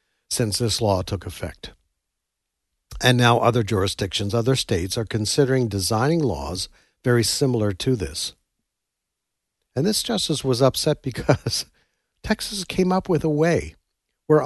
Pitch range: 105-145 Hz